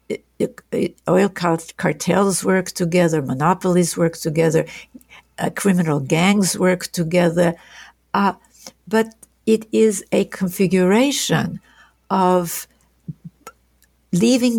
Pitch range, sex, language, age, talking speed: 165-200 Hz, female, English, 60-79, 80 wpm